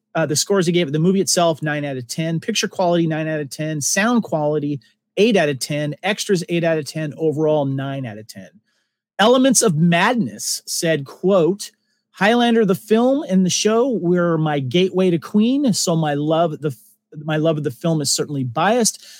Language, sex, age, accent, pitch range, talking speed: English, male, 40-59, American, 150-200 Hz, 195 wpm